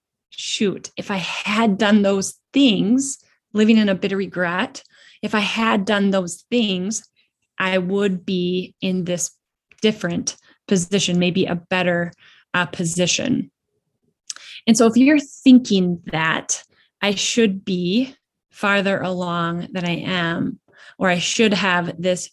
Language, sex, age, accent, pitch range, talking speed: English, female, 20-39, American, 185-240 Hz, 135 wpm